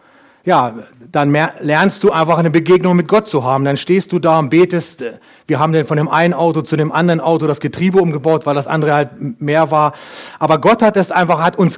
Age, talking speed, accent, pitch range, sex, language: 40-59, 230 wpm, German, 160-185 Hz, male, German